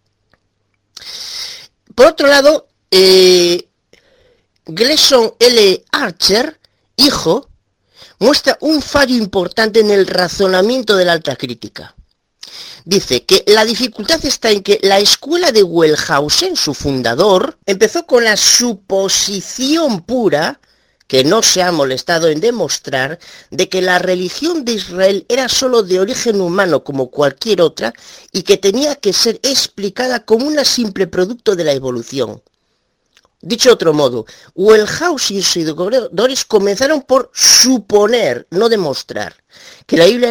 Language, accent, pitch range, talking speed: Spanish, Spanish, 175-255 Hz, 125 wpm